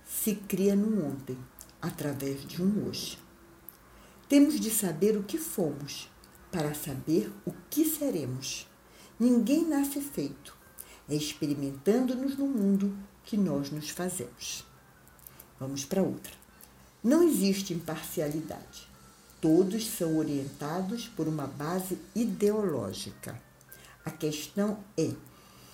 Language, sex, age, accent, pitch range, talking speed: Portuguese, female, 60-79, Brazilian, 140-200 Hz, 105 wpm